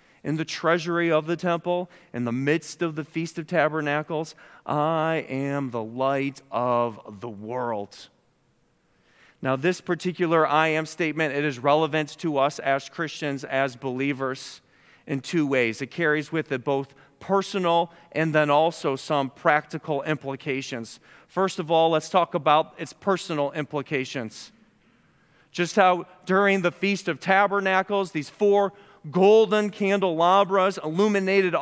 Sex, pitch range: male, 145-185 Hz